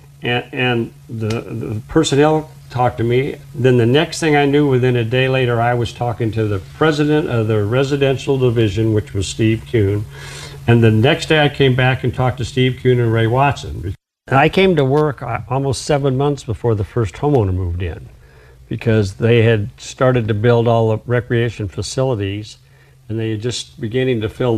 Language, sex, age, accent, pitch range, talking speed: English, male, 60-79, American, 105-130 Hz, 190 wpm